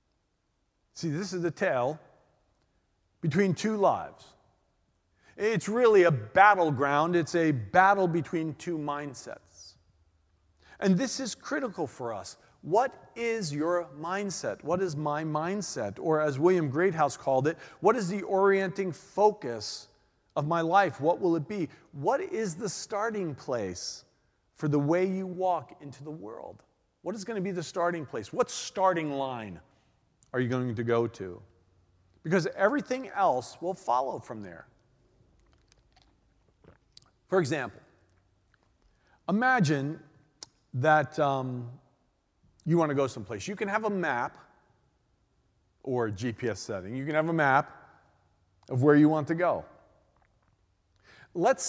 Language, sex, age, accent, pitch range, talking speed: English, male, 40-59, American, 120-180 Hz, 135 wpm